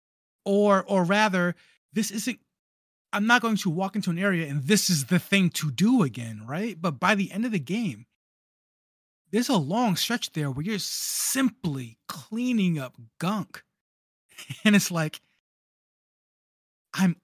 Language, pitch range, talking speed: English, 135-190 Hz, 155 wpm